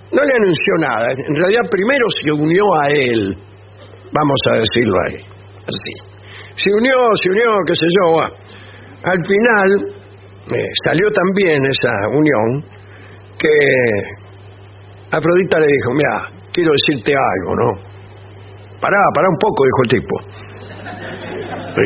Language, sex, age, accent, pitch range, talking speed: English, male, 60-79, Argentinian, 100-160 Hz, 130 wpm